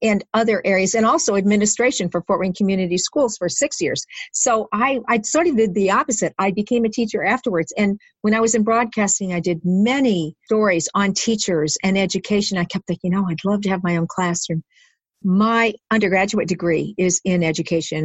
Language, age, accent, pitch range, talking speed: English, 50-69, American, 175-220 Hz, 195 wpm